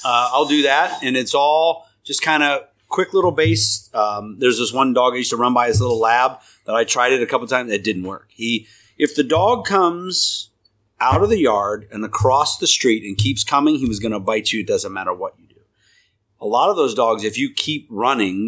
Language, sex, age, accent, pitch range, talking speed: English, male, 30-49, American, 100-165 Hz, 235 wpm